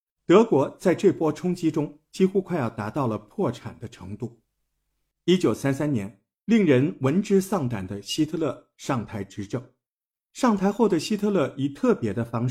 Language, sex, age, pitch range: Chinese, male, 50-69, 110-175 Hz